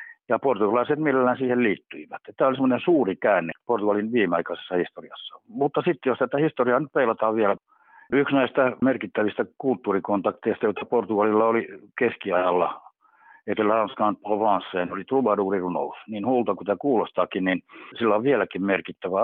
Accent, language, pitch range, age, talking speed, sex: native, Finnish, 100-130 Hz, 60-79, 135 wpm, male